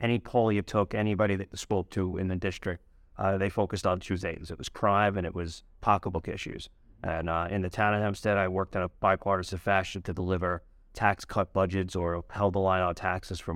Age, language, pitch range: 30-49, English, 90-100 Hz